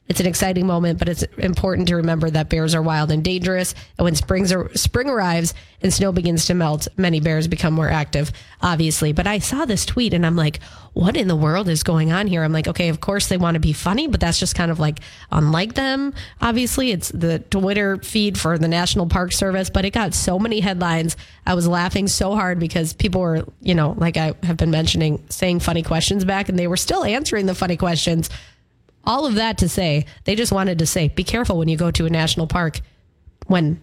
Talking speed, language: 230 wpm, English